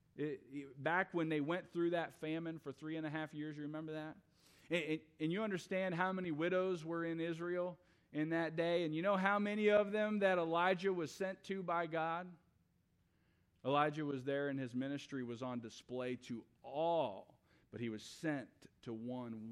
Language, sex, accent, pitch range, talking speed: English, male, American, 140-175 Hz, 180 wpm